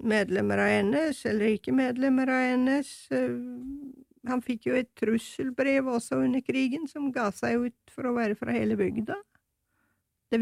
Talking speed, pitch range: 150 wpm, 205-255 Hz